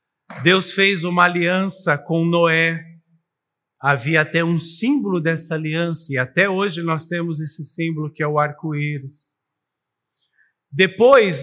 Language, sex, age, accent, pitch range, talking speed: Portuguese, male, 50-69, Brazilian, 155-200 Hz, 125 wpm